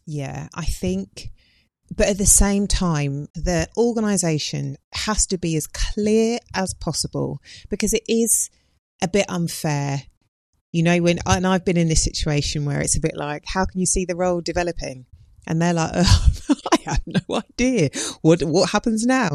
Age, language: 30-49, English